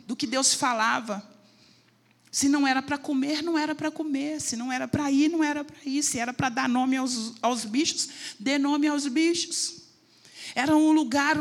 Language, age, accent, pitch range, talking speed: Portuguese, 40-59, Brazilian, 215-275 Hz, 195 wpm